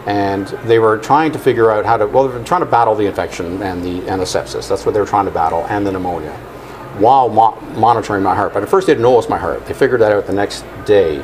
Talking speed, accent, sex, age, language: 280 wpm, American, male, 50-69, English